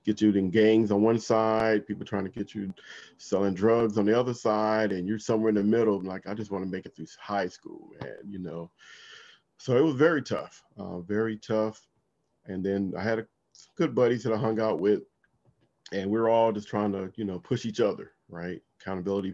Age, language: 40-59, English